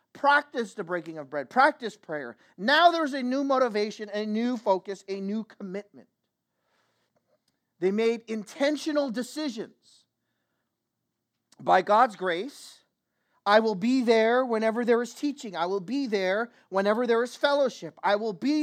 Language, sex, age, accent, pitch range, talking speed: English, male, 40-59, American, 165-245 Hz, 140 wpm